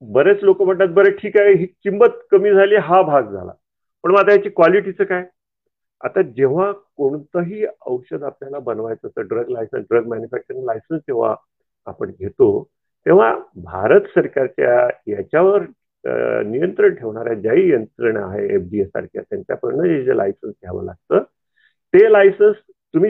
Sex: male